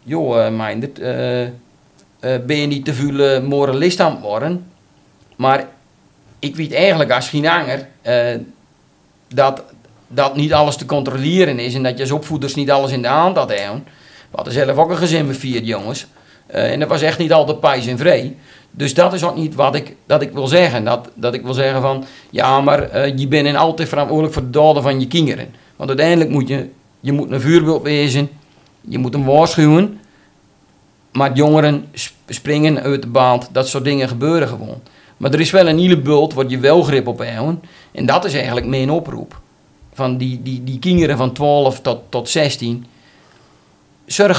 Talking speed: 195 wpm